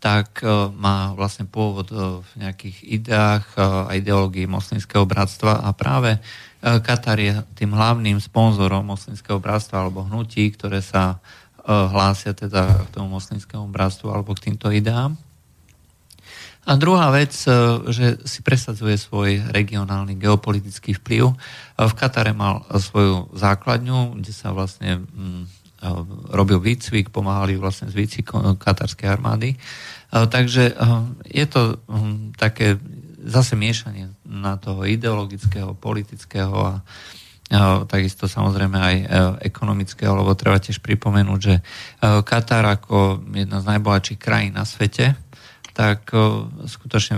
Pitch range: 100-115 Hz